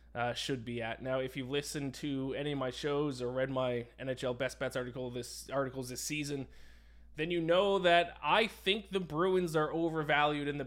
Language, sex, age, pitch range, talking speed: English, male, 20-39, 125-165 Hz, 200 wpm